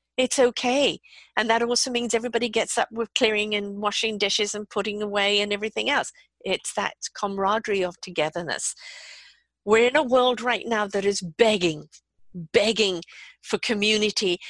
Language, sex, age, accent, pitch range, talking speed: English, female, 50-69, British, 195-240 Hz, 155 wpm